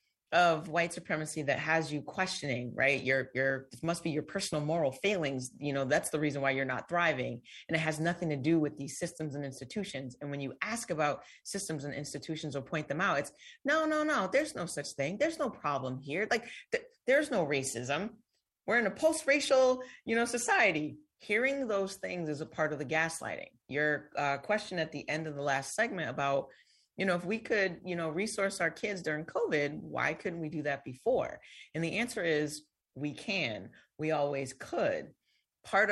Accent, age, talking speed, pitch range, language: American, 30-49, 200 wpm, 145-210 Hz, English